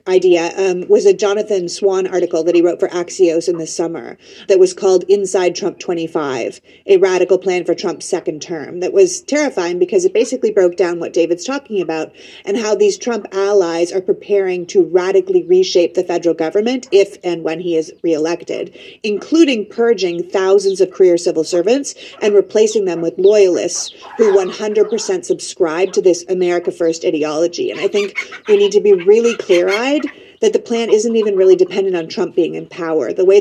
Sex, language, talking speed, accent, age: female, English, 185 wpm, American, 30-49